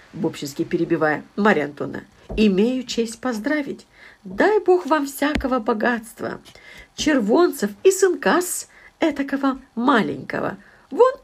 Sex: female